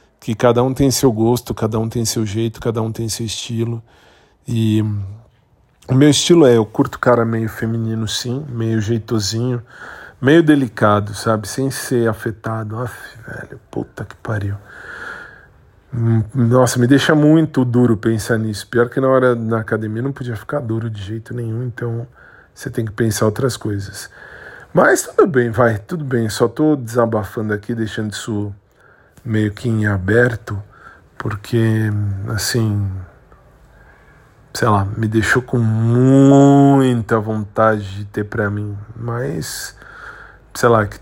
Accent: Brazilian